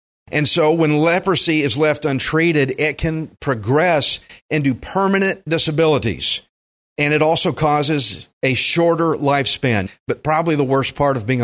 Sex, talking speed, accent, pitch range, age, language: male, 140 wpm, American, 130-170 Hz, 50-69, English